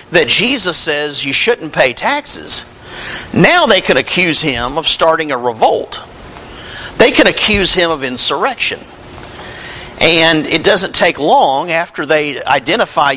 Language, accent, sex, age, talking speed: English, American, male, 50-69, 135 wpm